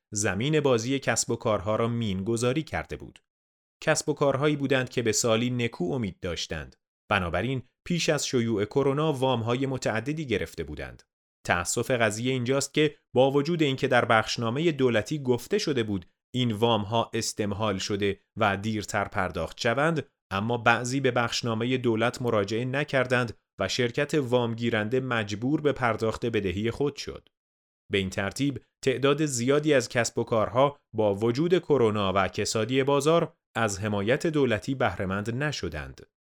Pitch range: 105-135 Hz